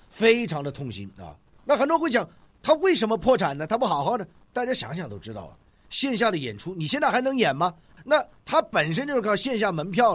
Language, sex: Chinese, male